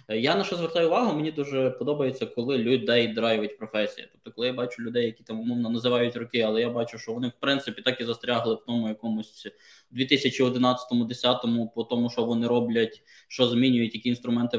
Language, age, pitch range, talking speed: Ukrainian, 20-39, 115-130 Hz, 185 wpm